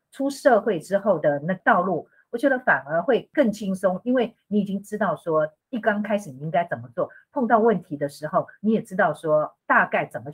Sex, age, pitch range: female, 50-69, 155-225 Hz